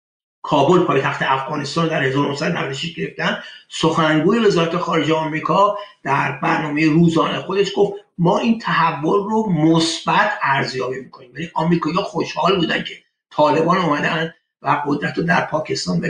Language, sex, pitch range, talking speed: Persian, male, 160-190 Hz, 140 wpm